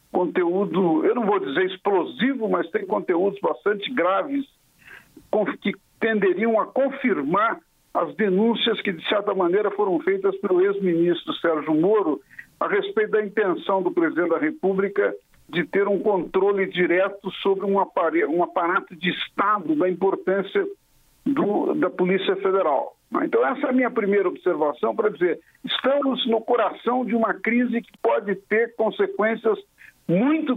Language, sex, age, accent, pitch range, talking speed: Portuguese, male, 50-69, Brazilian, 190-280 Hz, 145 wpm